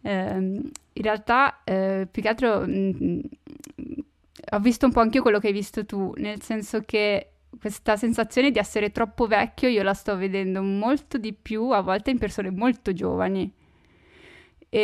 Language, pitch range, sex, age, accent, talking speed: Italian, 200-235 Hz, female, 10-29, native, 165 wpm